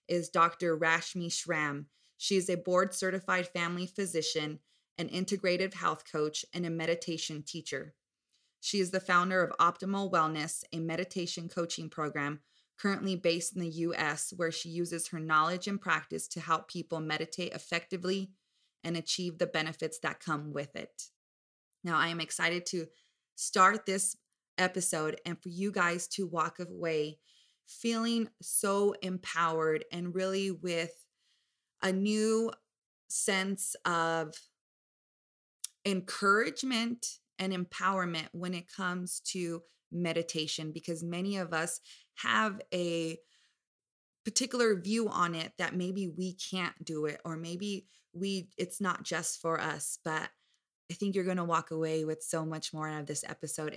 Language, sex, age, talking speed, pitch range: English, female, 20-39, 145 wpm, 160-185 Hz